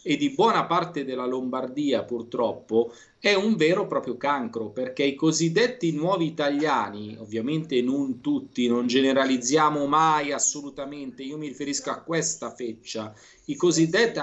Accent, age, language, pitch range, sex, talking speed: native, 40-59, Italian, 145-225 Hz, male, 140 wpm